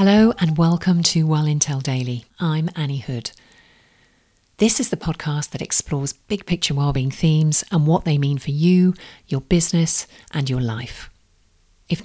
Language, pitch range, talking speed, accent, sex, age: English, 120-175 Hz, 160 wpm, British, female, 40-59